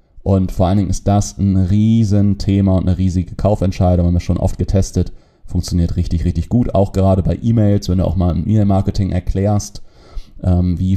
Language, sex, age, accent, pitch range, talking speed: German, male, 30-49, German, 90-110 Hz, 185 wpm